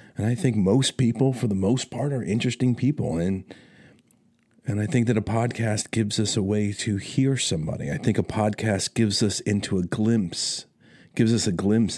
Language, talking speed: English, 195 wpm